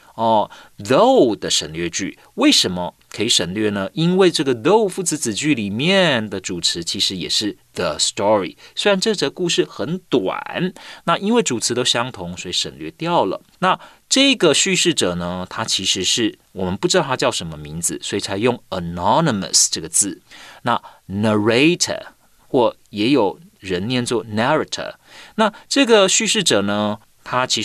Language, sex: Chinese, male